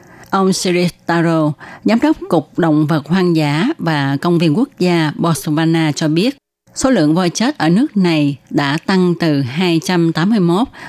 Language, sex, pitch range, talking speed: Vietnamese, female, 155-185 Hz, 160 wpm